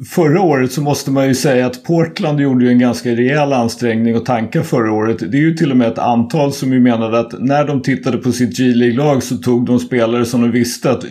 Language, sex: Swedish, male